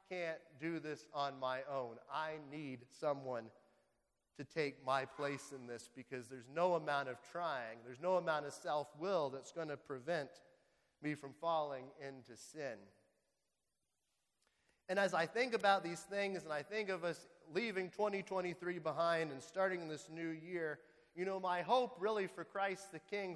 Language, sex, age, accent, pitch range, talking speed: English, male, 30-49, American, 140-185 Hz, 165 wpm